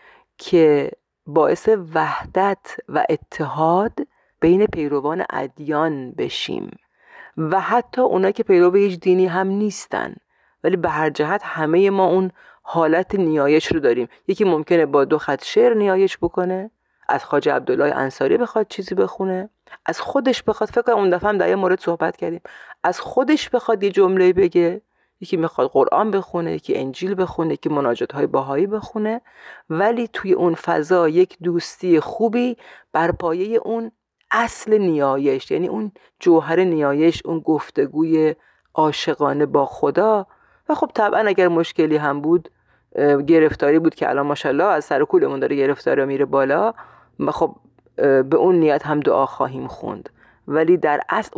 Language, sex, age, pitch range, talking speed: Persian, female, 30-49, 155-210 Hz, 145 wpm